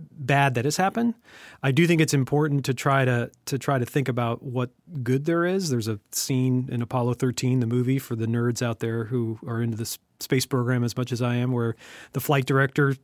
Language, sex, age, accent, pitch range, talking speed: English, male, 40-59, American, 130-155 Hz, 230 wpm